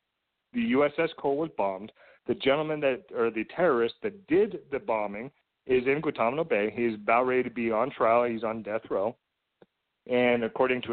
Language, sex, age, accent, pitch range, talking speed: English, male, 40-59, American, 120-185 Hz, 180 wpm